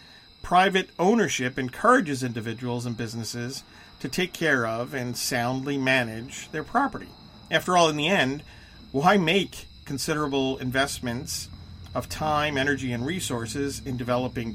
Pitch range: 120-155 Hz